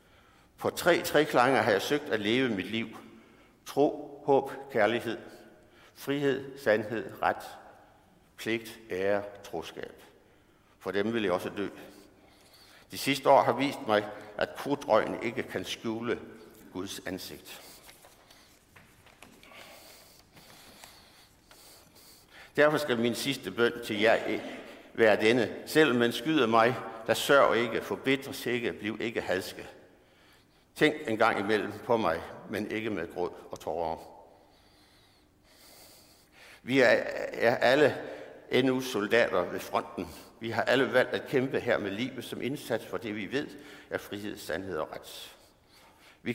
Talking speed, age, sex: 130 wpm, 60-79, male